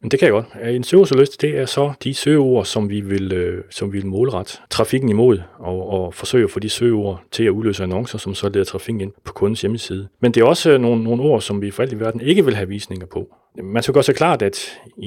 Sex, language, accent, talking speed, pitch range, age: male, Danish, native, 260 wpm, 95-130 Hz, 40-59